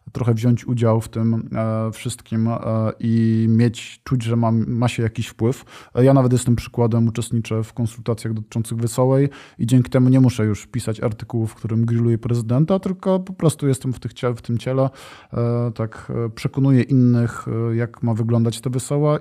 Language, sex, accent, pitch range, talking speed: Polish, male, native, 120-145 Hz, 160 wpm